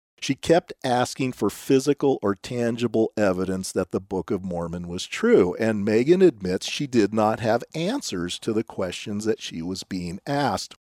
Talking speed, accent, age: 170 wpm, American, 50-69